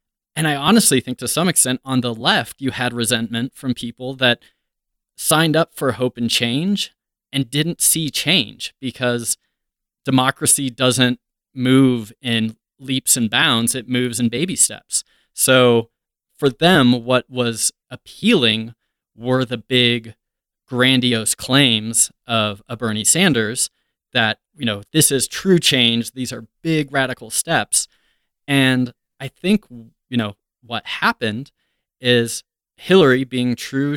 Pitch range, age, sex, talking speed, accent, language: 115-140 Hz, 20-39, male, 135 wpm, American, English